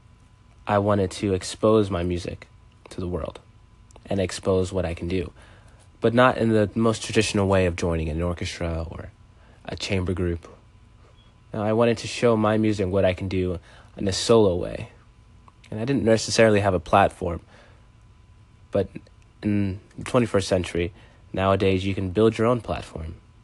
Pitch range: 90-110 Hz